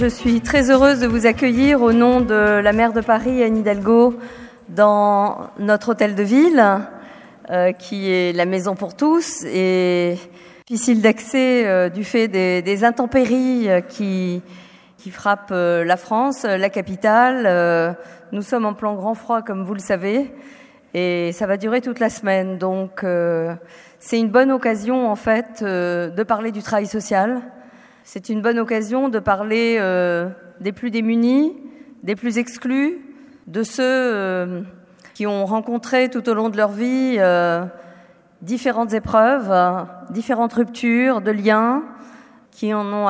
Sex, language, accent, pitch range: female, French, French, 190-240 Hz